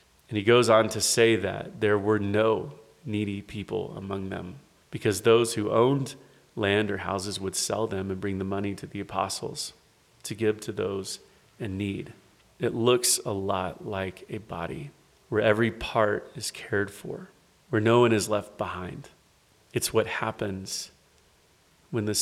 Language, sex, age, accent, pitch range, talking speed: English, male, 30-49, American, 100-115 Hz, 165 wpm